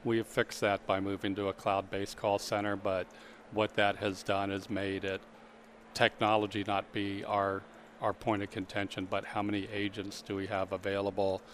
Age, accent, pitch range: 40-59, American, 100-110 Hz